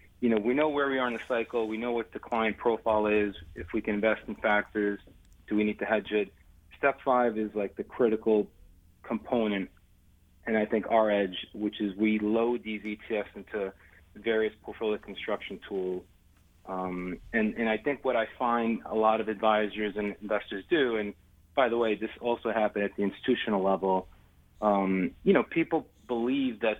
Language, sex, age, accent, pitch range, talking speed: English, male, 30-49, American, 95-115 Hz, 190 wpm